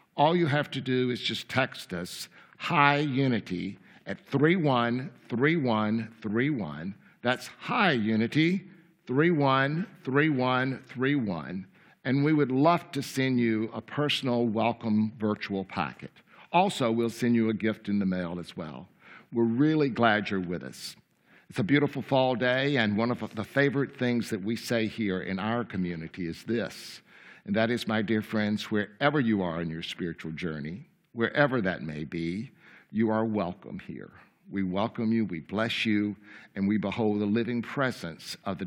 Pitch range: 100-130 Hz